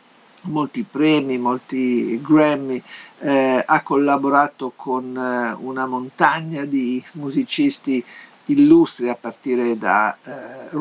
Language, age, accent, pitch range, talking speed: Italian, 50-69, native, 125-160 Hz, 100 wpm